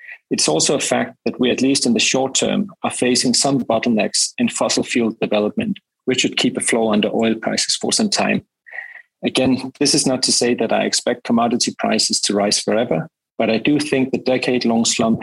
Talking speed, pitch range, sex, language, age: 205 wpm, 110-130 Hz, male, English, 40-59